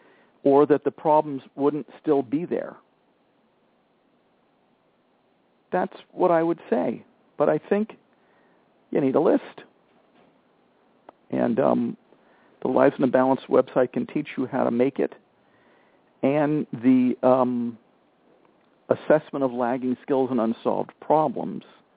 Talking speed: 125 wpm